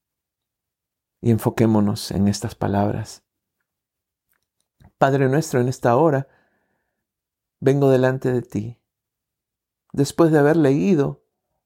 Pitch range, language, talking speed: 105-125 Hz, Spanish, 95 wpm